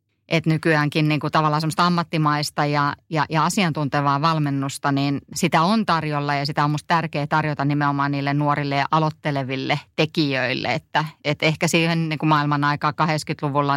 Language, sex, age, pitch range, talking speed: Finnish, female, 30-49, 145-165 Hz, 155 wpm